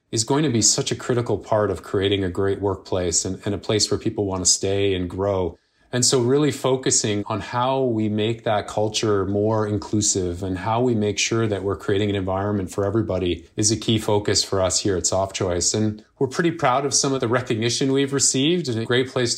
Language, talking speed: English, 225 wpm